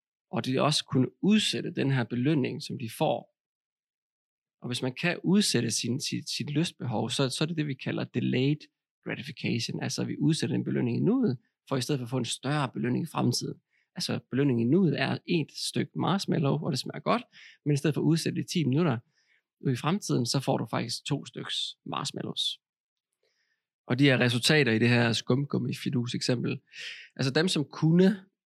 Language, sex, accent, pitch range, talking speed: Danish, male, native, 120-150 Hz, 200 wpm